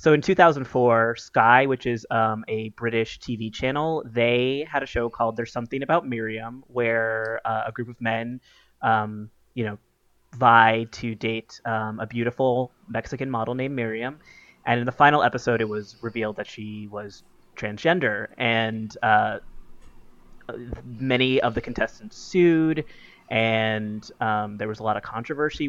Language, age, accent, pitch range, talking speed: English, 20-39, American, 110-130 Hz, 155 wpm